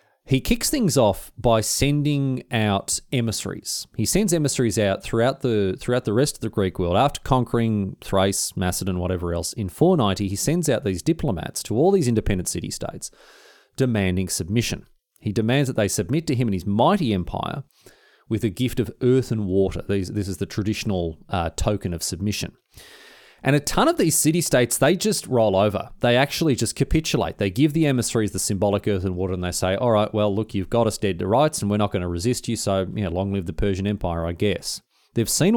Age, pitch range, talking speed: 30-49, 100-130 Hz, 210 wpm